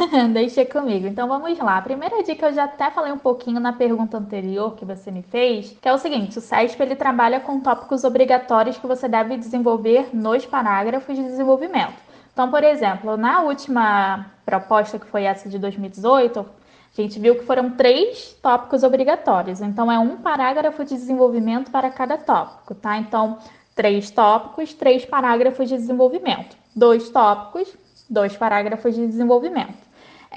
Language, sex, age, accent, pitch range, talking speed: Portuguese, female, 10-29, Brazilian, 220-265 Hz, 160 wpm